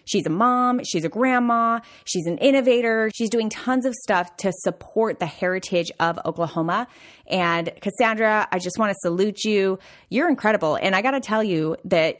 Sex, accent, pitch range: female, American, 175-235 Hz